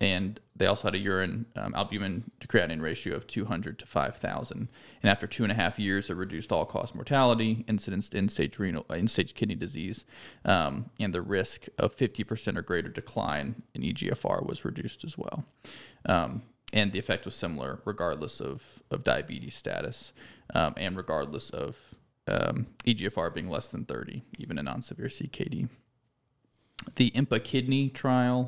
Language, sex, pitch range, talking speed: English, male, 100-115 Hz, 160 wpm